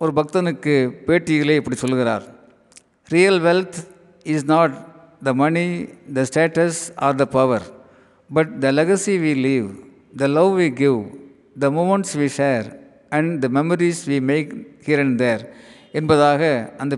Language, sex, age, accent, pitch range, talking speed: Tamil, male, 50-69, native, 140-175 Hz, 135 wpm